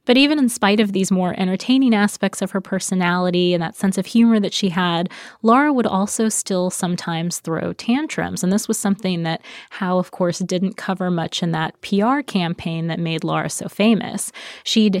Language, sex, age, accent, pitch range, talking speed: English, female, 20-39, American, 175-210 Hz, 190 wpm